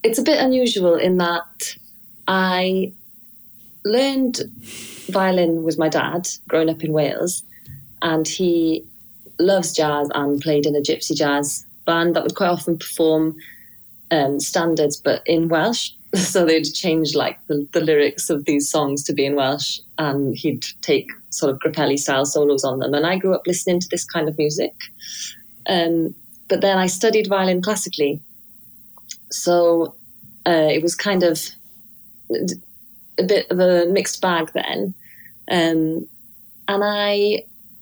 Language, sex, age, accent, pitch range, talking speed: English, female, 30-49, British, 155-190 Hz, 150 wpm